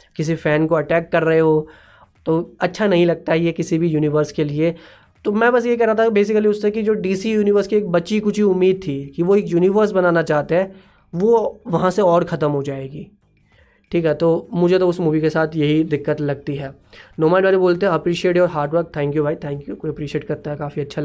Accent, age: native, 20-39